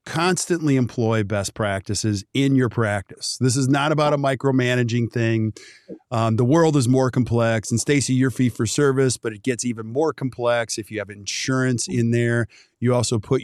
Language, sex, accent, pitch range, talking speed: English, male, American, 115-145 Hz, 185 wpm